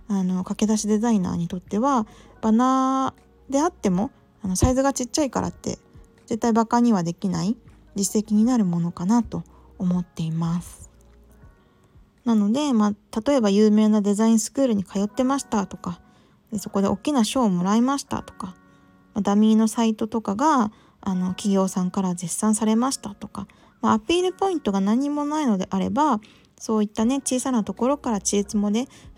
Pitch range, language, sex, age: 190-240 Hz, Japanese, female, 20-39